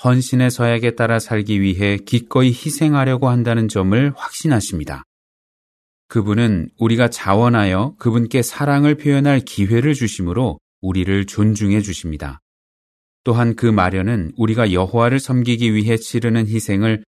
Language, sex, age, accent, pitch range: Korean, male, 30-49, native, 95-125 Hz